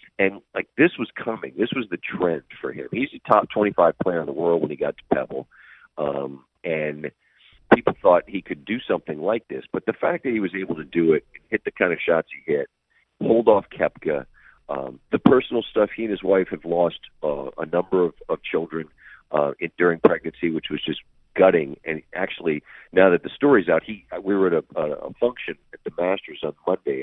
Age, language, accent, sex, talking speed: 40-59, English, American, male, 215 wpm